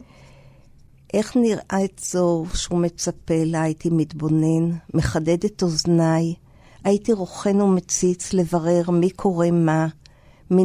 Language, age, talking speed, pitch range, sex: Hebrew, 50-69, 115 wpm, 160-190 Hz, female